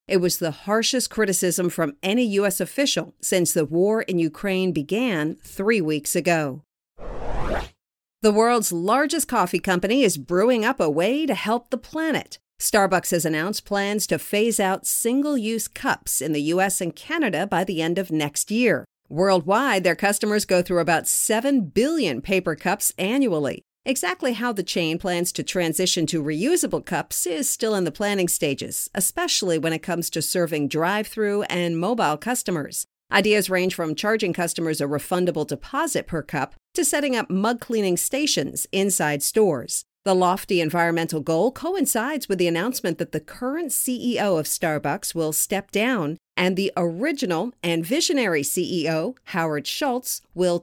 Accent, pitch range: American, 170-225 Hz